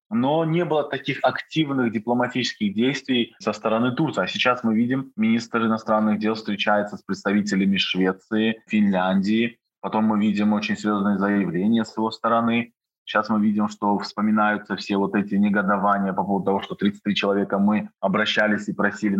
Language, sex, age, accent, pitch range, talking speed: Russian, male, 20-39, native, 100-120 Hz, 155 wpm